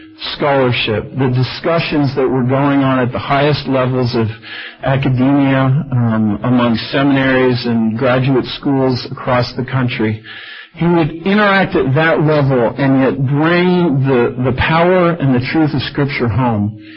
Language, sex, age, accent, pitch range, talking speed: English, male, 50-69, American, 115-140 Hz, 140 wpm